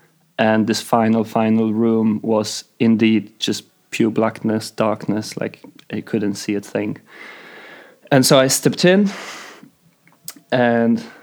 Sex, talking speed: male, 125 wpm